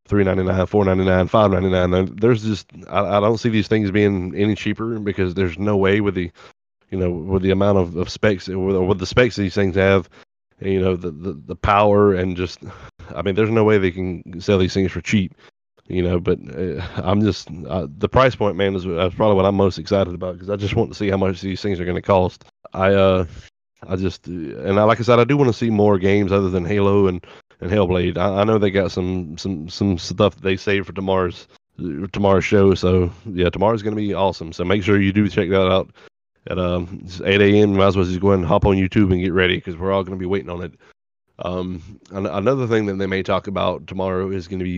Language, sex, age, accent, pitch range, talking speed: English, male, 30-49, American, 90-105 Hz, 240 wpm